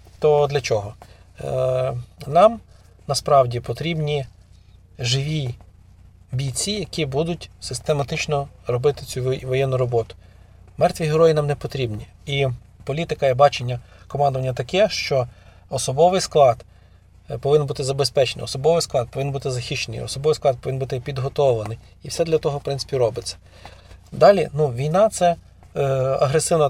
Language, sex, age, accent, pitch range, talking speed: Ukrainian, male, 40-59, native, 115-150 Hz, 125 wpm